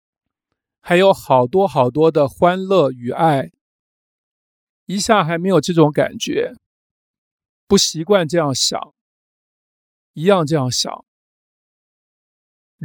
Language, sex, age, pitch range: Chinese, male, 50-69, 140-195 Hz